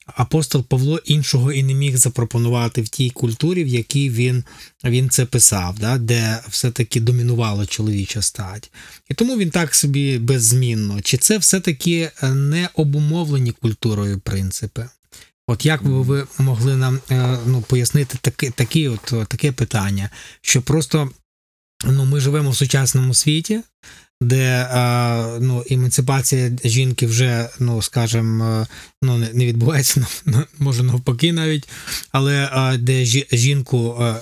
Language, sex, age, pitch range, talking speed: Ukrainian, male, 20-39, 120-145 Hz, 120 wpm